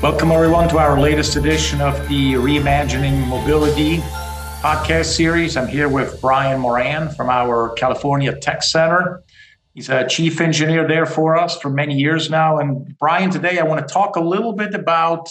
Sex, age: male, 50-69